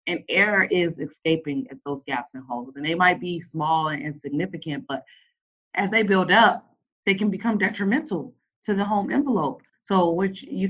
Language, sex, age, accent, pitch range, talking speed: English, female, 20-39, American, 150-195 Hz, 180 wpm